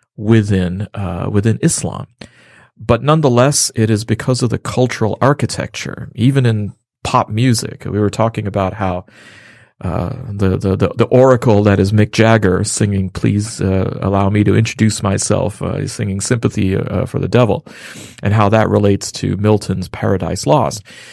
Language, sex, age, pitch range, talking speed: English, male, 40-59, 100-125 Hz, 160 wpm